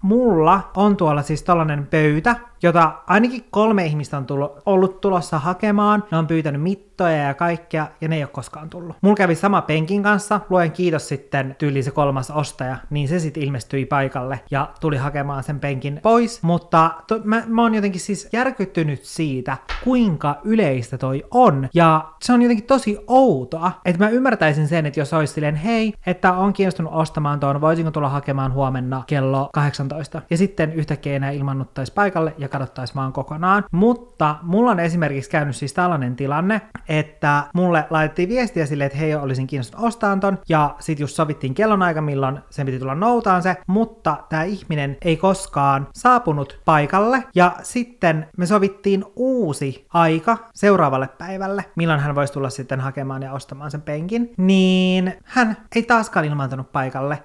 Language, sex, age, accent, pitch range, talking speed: Finnish, male, 30-49, native, 145-195 Hz, 165 wpm